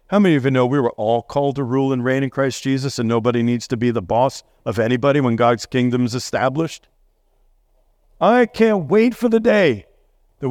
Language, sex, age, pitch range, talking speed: English, male, 50-69, 130-180 Hz, 210 wpm